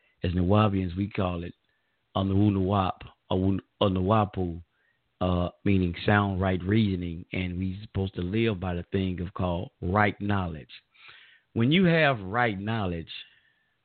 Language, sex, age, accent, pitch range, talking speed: English, male, 50-69, American, 90-110 Hz, 140 wpm